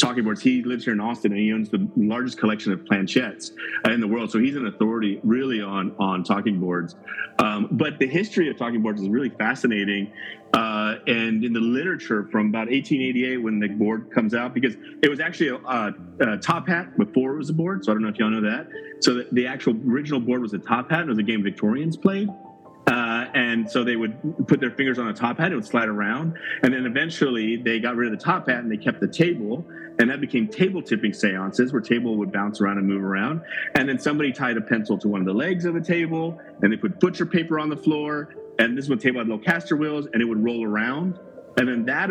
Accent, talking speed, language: American, 240 wpm, English